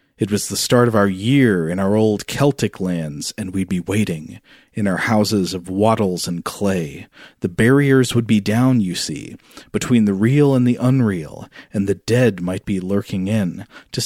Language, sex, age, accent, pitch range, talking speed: English, male, 40-59, American, 100-125 Hz, 190 wpm